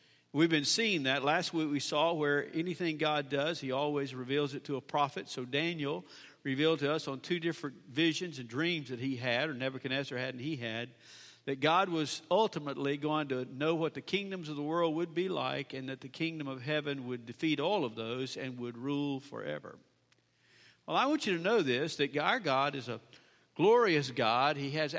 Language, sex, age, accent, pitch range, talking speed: English, male, 50-69, American, 135-165 Hz, 205 wpm